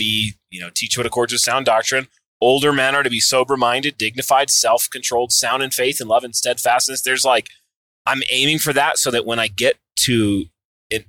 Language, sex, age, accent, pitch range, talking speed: English, male, 30-49, American, 115-145 Hz, 200 wpm